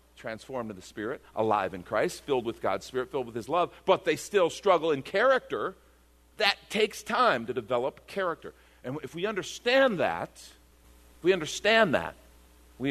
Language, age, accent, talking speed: English, 50-69, American, 165 wpm